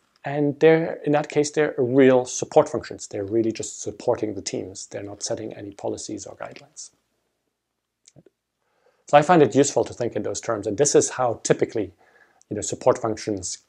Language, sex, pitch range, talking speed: English, male, 120-150 Hz, 175 wpm